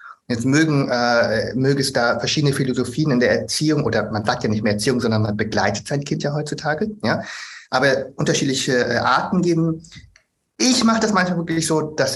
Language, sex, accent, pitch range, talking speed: German, male, German, 115-135 Hz, 190 wpm